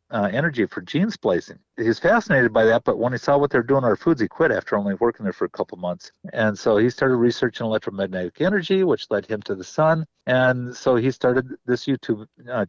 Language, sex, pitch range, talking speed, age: English, male, 110-140 Hz, 225 wpm, 50-69